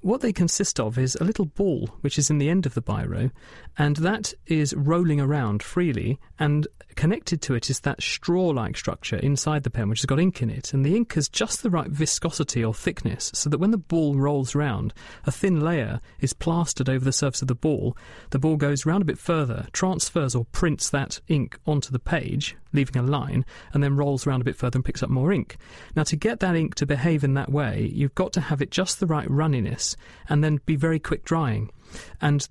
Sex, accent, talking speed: male, British, 225 wpm